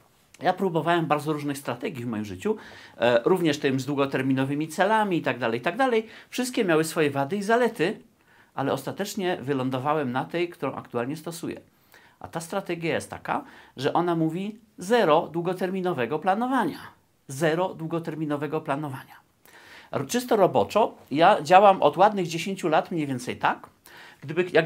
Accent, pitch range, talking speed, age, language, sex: native, 145-195 Hz, 145 wpm, 40-59, Polish, male